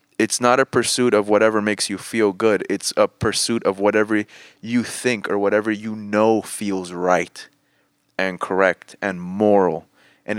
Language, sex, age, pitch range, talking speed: English, male, 20-39, 100-115 Hz, 160 wpm